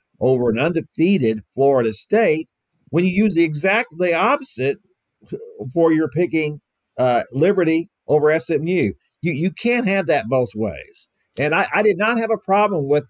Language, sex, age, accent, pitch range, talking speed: English, male, 50-69, American, 120-180 Hz, 155 wpm